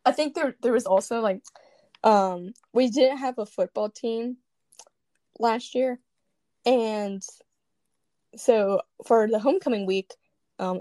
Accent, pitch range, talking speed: American, 200-255 Hz, 130 wpm